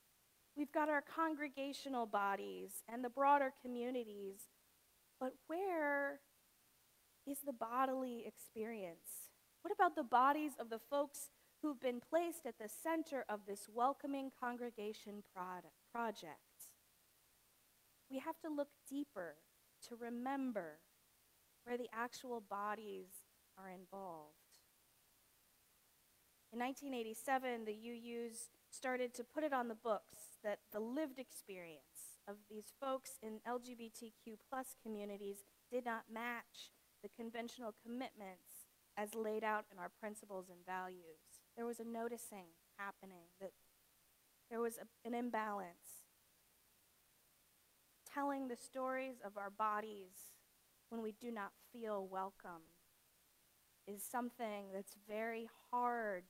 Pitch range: 205-260 Hz